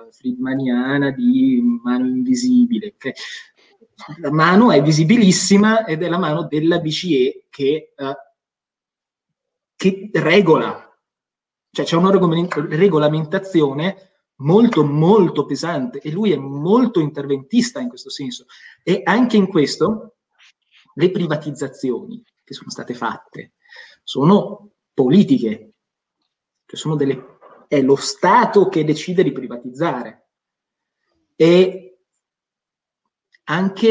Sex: male